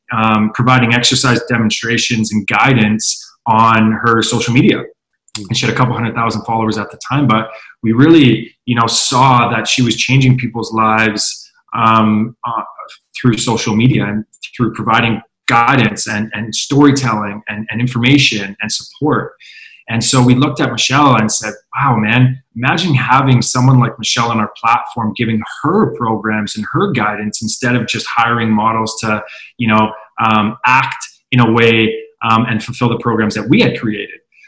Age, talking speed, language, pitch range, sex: 20-39, 165 wpm, English, 110-125 Hz, male